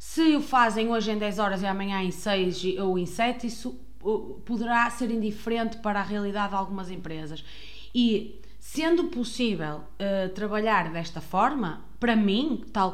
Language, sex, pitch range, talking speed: Portuguese, female, 195-245 Hz, 160 wpm